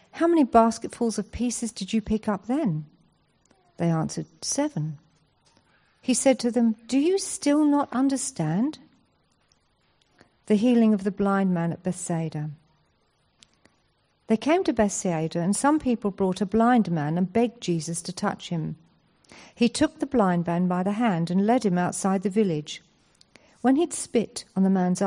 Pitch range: 175-230 Hz